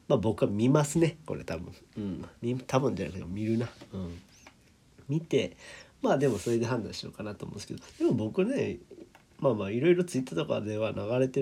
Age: 40-59